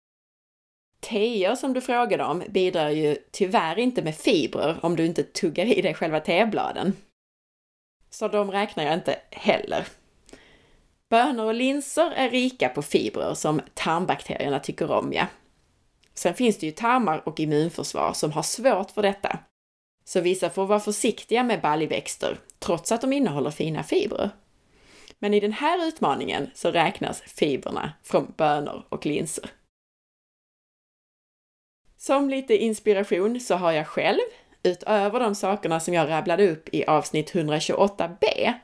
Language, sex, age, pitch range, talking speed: Swedish, female, 30-49, 165-225 Hz, 140 wpm